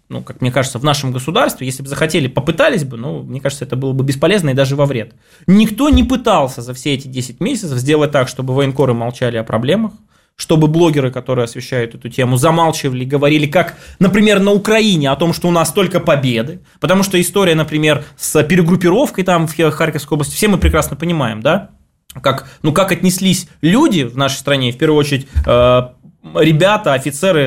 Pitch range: 135-175 Hz